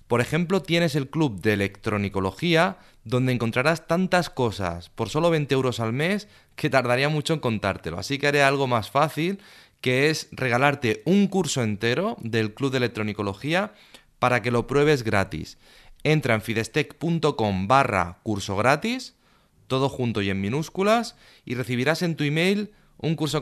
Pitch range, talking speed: 105-145 Hz, 155 wpm